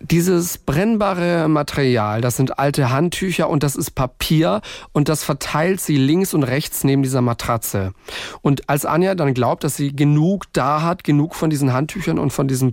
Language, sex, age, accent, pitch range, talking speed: German, male, 40-59, German, 130-160 Hz, 180 wpm